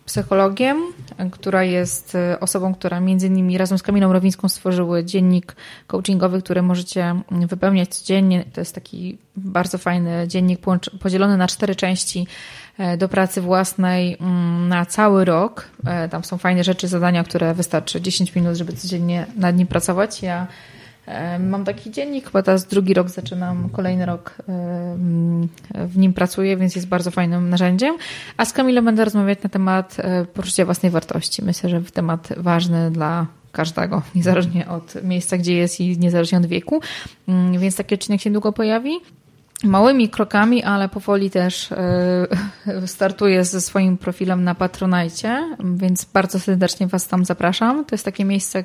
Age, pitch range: 20-39, 175-195 Hz